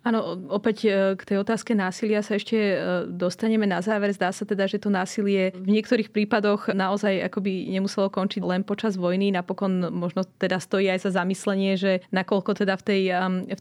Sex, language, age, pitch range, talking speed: female, Slovak, 20-39, 185-215 Hz, 175 wpm